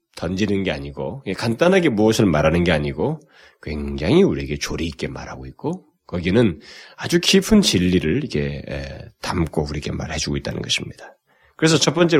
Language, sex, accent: Korean, male, native